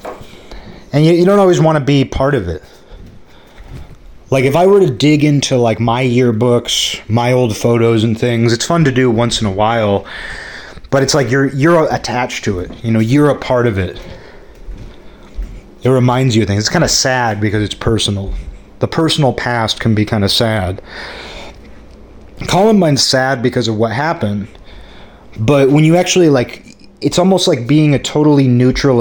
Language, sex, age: English, male, 30-49